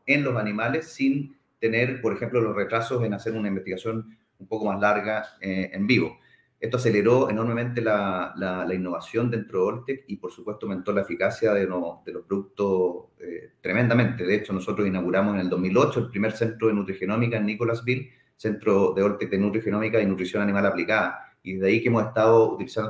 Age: 30-49